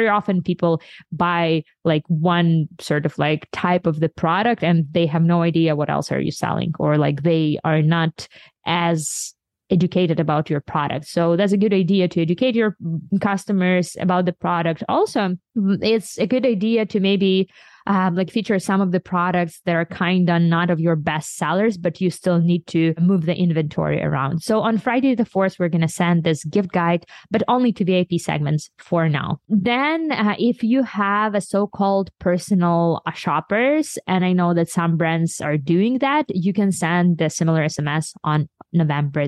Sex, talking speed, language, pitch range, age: female, 185 wpm, English, 165-205 Hz, 20-39